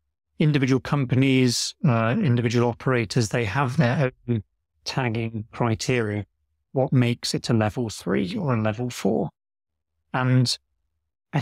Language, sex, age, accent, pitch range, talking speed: English, male, 30-49, British, 110-135 Hz, 120 wpm